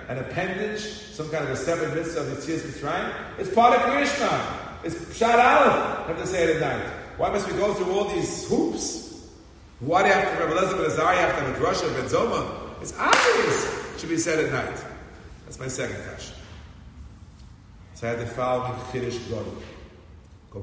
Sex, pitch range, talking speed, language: male, 120-180 Hz, 175 wpm, English